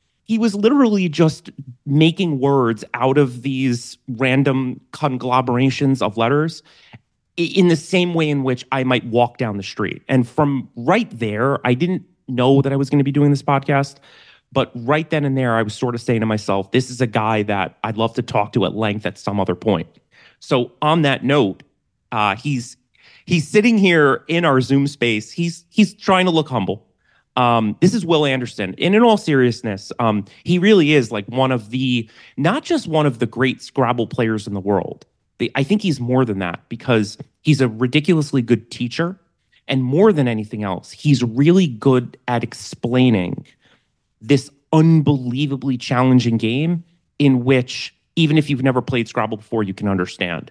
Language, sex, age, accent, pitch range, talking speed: English, male, 30-49, American, 115-145 Hz, 185 wpm